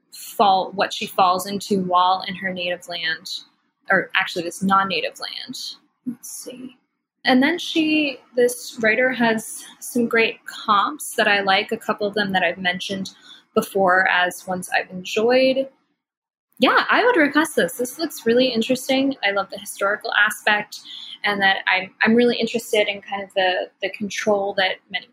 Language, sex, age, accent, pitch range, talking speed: English, female, 10-29, American, 195-255 Hz, 165 wpm